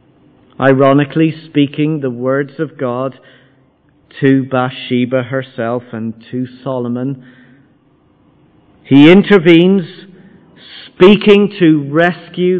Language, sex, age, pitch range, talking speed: English, male, 40-59, 140-190 Hz, 80 wpm